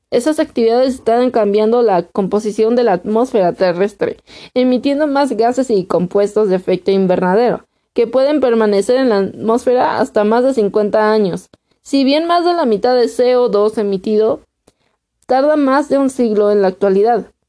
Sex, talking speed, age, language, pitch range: female, 160 wpm, 20-39, Spanish, 190-245 Hz